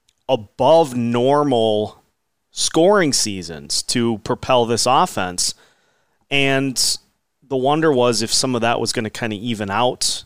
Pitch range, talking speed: 110-130 Hz, 135 wpm